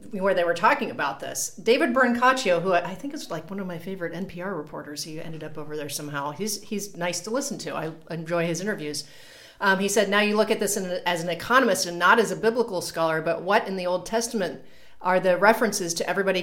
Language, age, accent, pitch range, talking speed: English, 30-49, American, 170-205 Hz, 235 wpm